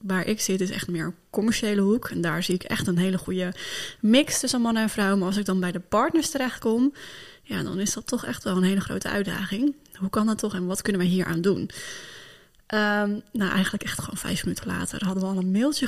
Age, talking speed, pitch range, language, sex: 20-39, 245 wpm, 190-220 Hz, Dutch, female